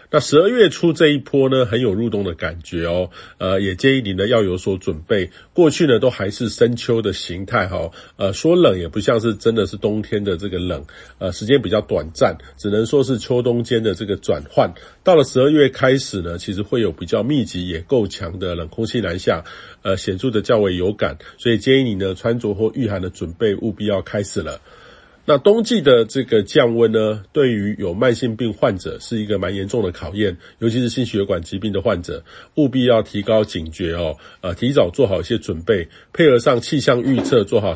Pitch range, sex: 95-125 Hz, male